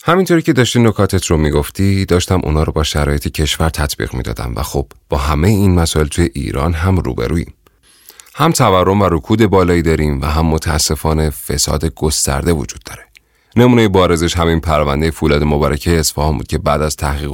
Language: Persian